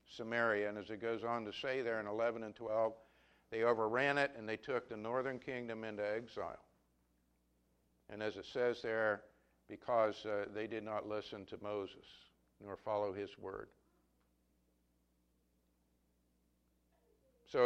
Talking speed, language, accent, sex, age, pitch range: 145 wpm, English, American, male, 60-79, 100-135 Hz